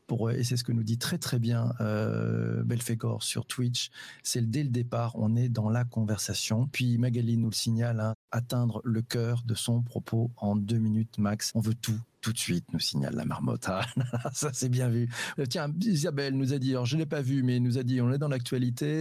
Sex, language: male, French